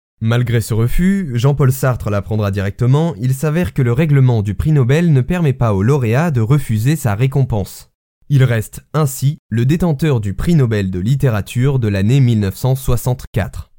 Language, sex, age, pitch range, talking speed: French, male, 20-39, 110-145 Hz, 160 wpm